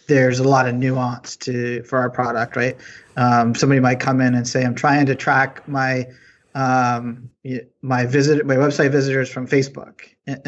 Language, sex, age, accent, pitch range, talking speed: English, male, 30-49, American, 125-140 Hz, 180 wpm